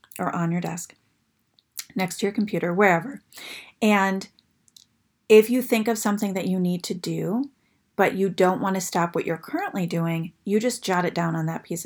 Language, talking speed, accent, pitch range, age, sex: English, 190 wpm, American, 170-210 Hz, 30-49, female